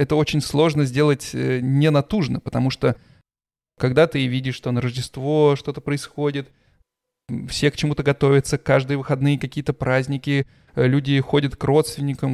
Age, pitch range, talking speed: 20-39, 120-145 Hz, 130 wpm